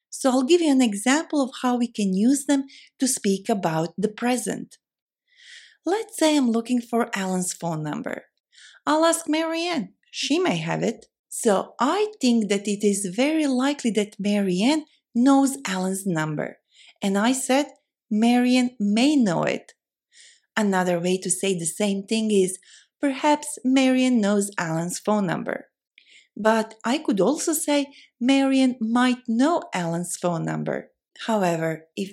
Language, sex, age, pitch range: Korean, female, 30-49, 200-290 Hz